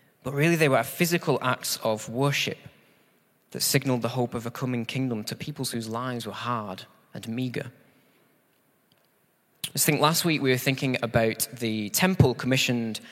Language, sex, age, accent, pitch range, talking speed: English, male, 20-39, British, 115-145 Hz, 150 wpm